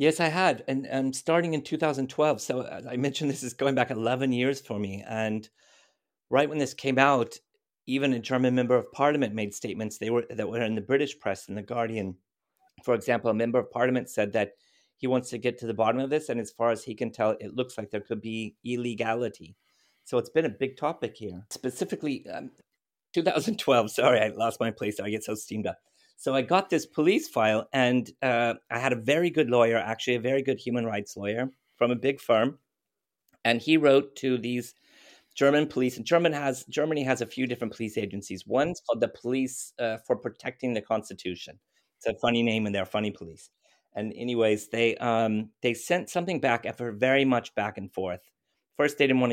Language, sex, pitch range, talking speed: English, male, 110-135 Hz, 210 wpm